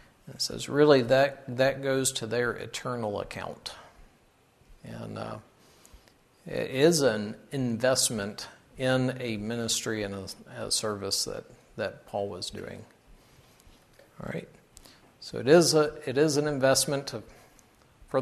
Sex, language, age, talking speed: male, English, 50-69, 120 wpm